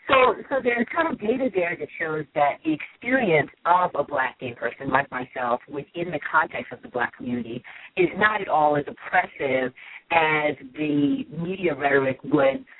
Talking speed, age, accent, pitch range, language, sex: 175 wpm, 40-59, American, 135-185 Hz, English, female